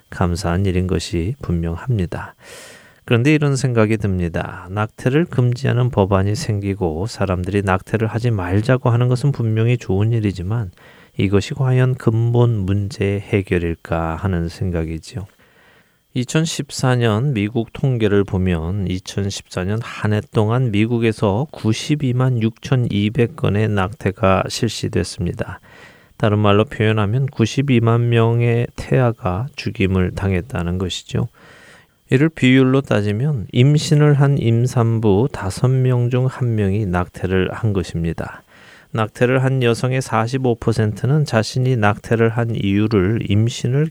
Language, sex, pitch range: Korean, male, 95-125 Hz